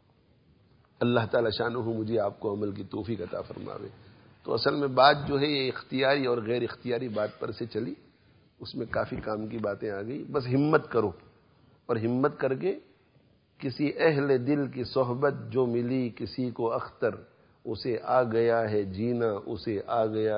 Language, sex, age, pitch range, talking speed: English, male, 50-69, 115-140 Hz, 170 wpm